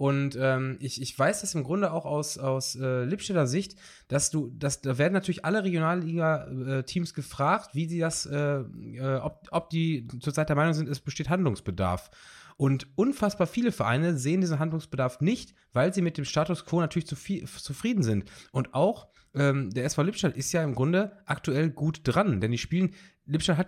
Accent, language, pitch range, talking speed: German, German, 130-170 Hz, 195 wpm